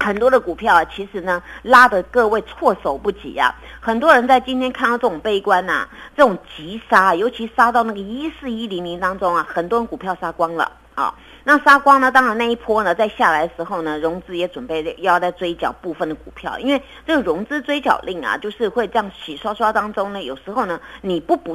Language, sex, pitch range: Chinese, female, 175-245 Hz